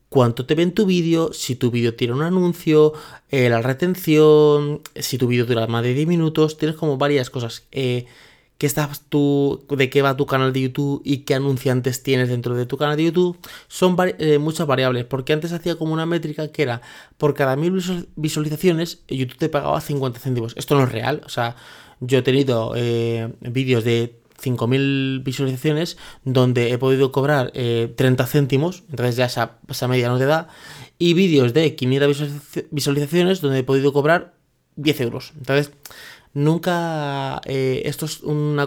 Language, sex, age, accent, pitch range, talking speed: Spanish, male, 30-49, Spanish, 130-155 Hz, 180 wpm